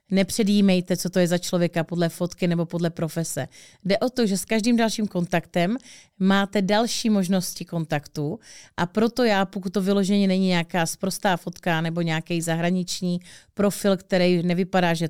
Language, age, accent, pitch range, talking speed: Czech, 30-49, native, 175-210 Hz, 160 wpm